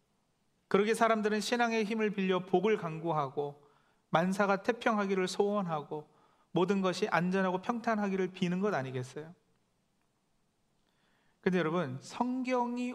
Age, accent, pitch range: 40-59, native, 175-230 Hz